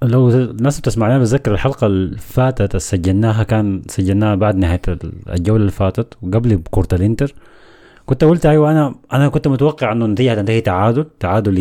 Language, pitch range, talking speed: Arabic, 100-135 Hz, 145 wpm